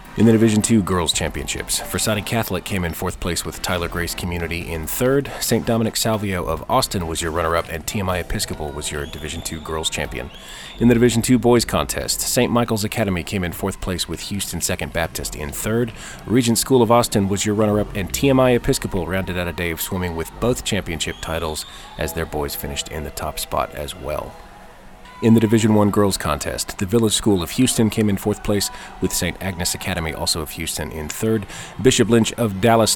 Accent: American